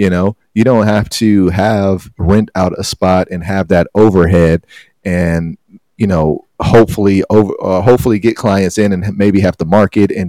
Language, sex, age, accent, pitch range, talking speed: English, male, 30-49, American, 90-105 Hz, 180 wpm